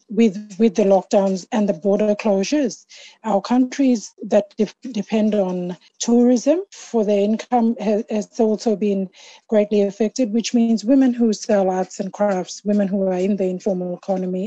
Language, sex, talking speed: English, female, 160 wpm